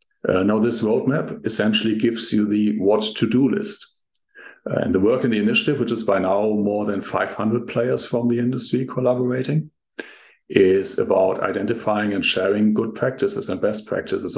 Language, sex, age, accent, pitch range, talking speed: English, male, 50-69, German, 100-125 Hz, 170 wpm